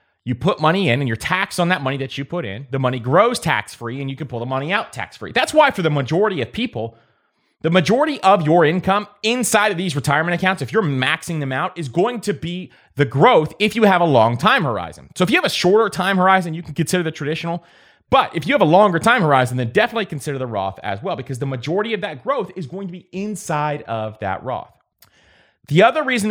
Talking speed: 240 wpm